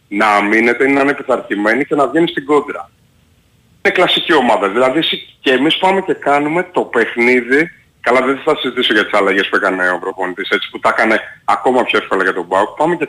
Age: 30-49